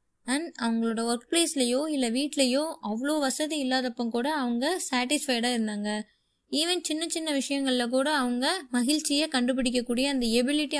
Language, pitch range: Tamil, 230-295 Hz